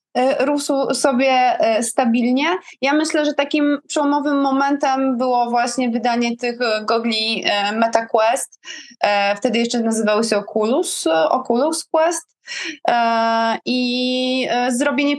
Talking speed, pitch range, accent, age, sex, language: 95 wpm, 225-270 Hz, native, 20-39, female, Polish